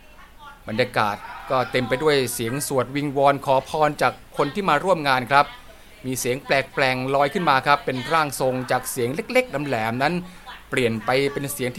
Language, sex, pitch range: Thai, male, 120-145 Hz